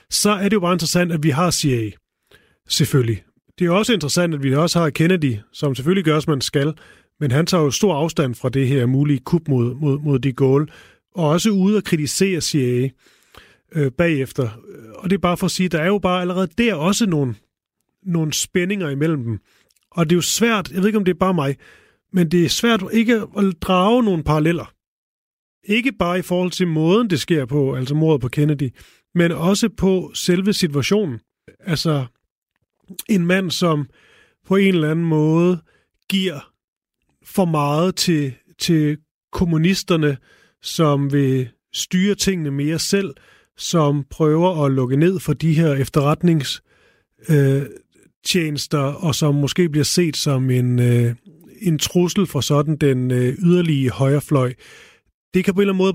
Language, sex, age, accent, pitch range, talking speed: Danish, male, 30-49, native, 140-185 Hz, 170 wpm